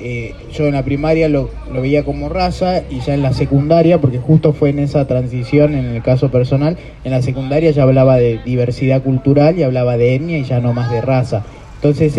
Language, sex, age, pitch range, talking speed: English, male, 20-39, 130-160 Hz, 215 wpm